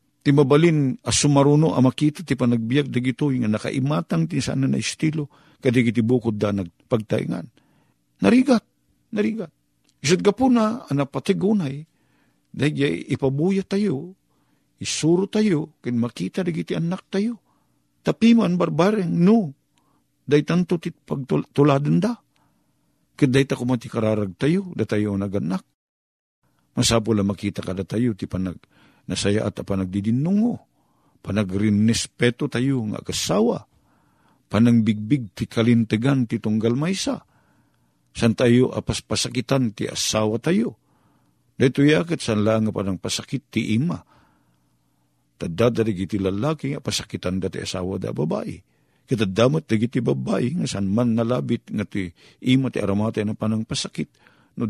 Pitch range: 105-150 Hz